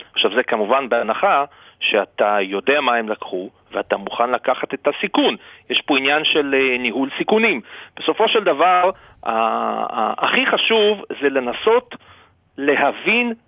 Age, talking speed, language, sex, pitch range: 40-59, 135 wpm, Hebrew, male, 135-215 Hz